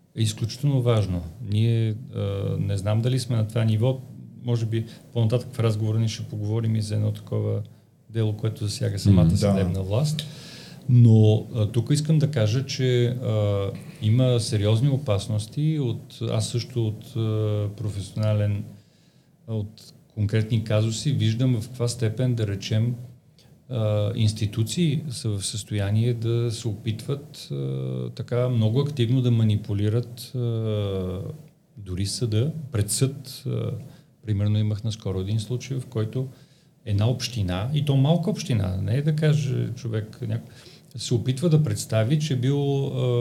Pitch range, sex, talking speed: 110-130 Hz, male, 145 wpm